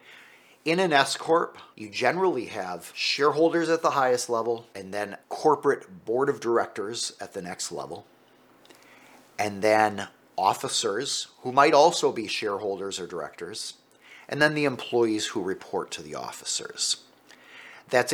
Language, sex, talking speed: English, male, 135 wpm